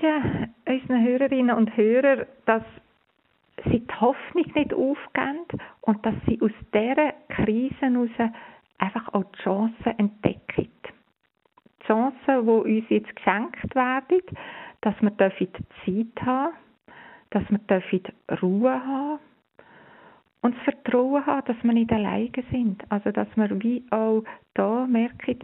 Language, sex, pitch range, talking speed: German, female, 205-255 Hz, 120 wpm